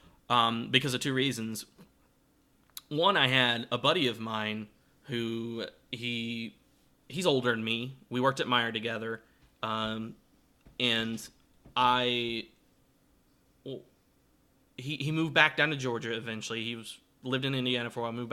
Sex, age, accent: male, 20-39, American